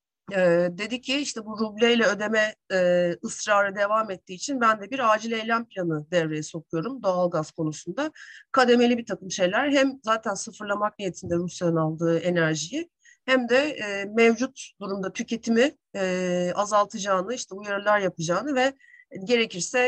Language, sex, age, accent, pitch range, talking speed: Turkish, female, 40-59, native, 190-245 Hz, 140 wpm